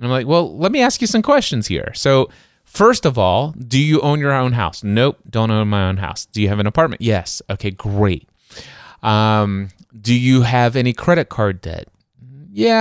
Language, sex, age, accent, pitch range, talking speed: English, male, 20-39, American, 100-135 Hz, 200 wpm